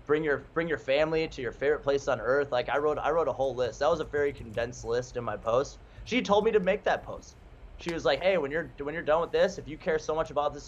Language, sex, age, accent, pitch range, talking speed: English, male, 20-39, American, 125-155 Hz, 300 wpm